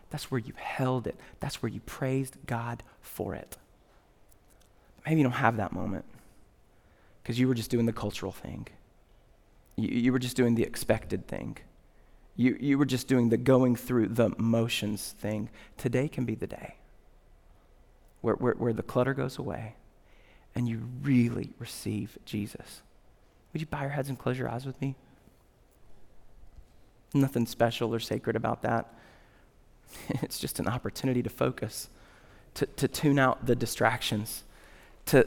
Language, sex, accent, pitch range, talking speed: English, male, American, 110-130 Hz, 155 wpm